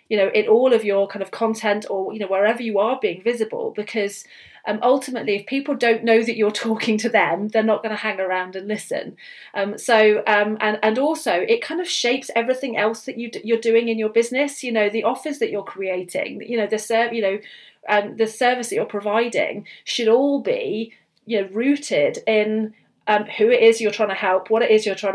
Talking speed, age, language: 230 wpm, 40-59, English